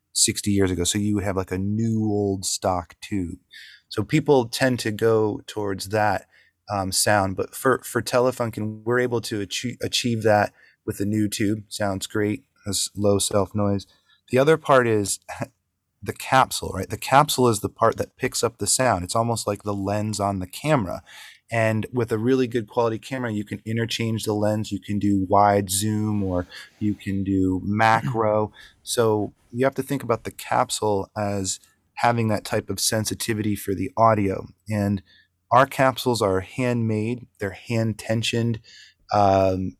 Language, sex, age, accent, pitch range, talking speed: English, male, 30-49, American, 100-115 Hz, 170 wpm